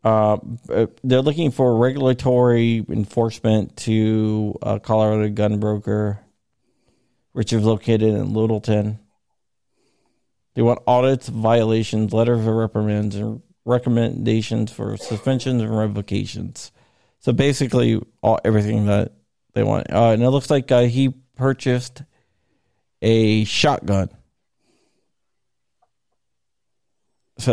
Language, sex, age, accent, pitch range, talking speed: English, male, 40-59, American, 110-130 Hz, 105 wpm